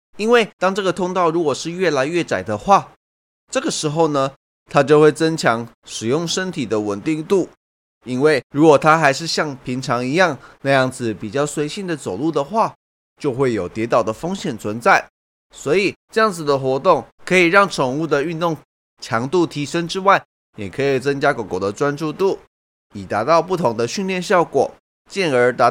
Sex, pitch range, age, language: male, 125-175 Hz, 20-39, Chinese